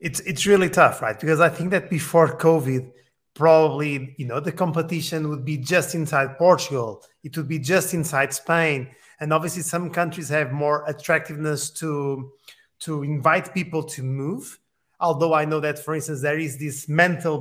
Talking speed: 170 wpm